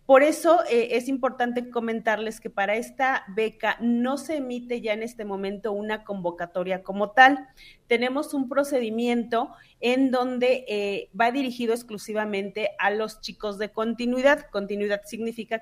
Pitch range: 200-245 Hz